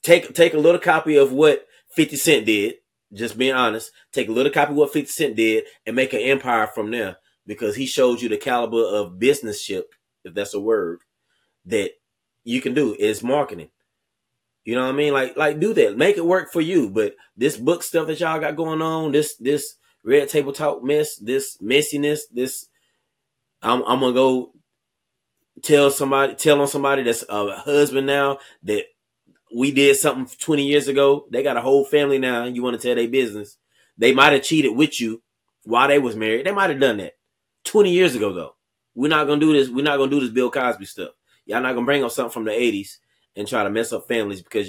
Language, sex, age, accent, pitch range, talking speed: English, male, 30-49, American, 115-155 Hz, 215 wpm